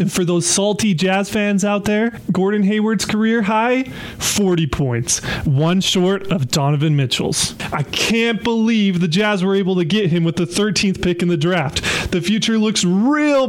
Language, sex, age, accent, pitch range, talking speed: English, male, 20-39, American, 155-200 Hz, 180 wpm